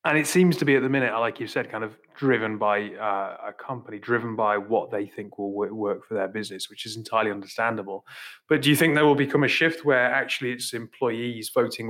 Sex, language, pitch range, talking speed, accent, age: male, English, 115-145 Hz, 230 wpm, British, 30-49